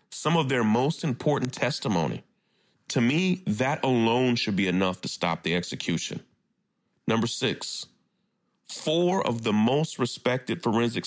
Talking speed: 135 wpm